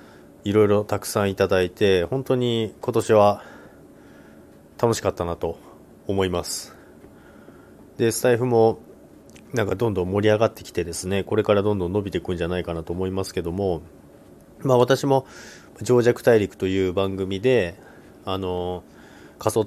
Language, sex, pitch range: Japanese, male, 85-110 Hz